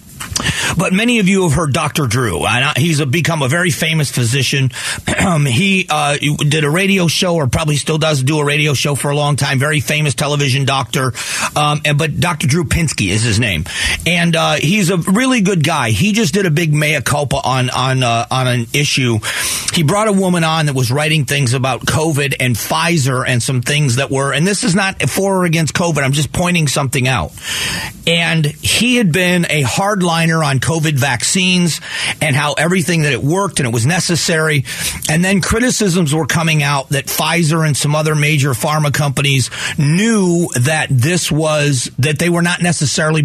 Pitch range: 135-165 Hz